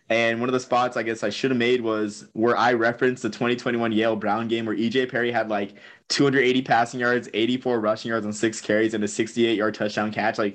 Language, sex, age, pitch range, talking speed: English, male, 20-39, 110-130 Hz, 240 wpm